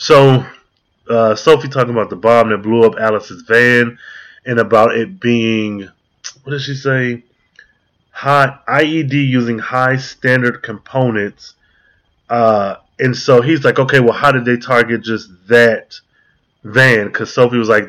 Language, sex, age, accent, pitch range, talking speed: English, male, 20-39, American, 115-140 Hz, 150 wpm